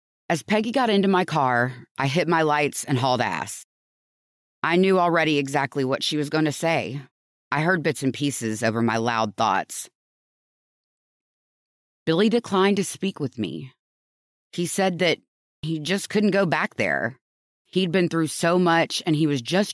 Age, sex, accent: 30-49, female, American